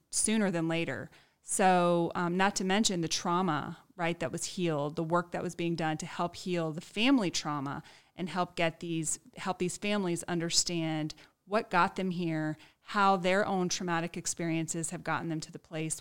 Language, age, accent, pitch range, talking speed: English, 30-49, American, 160-190 Hz, 185 wpm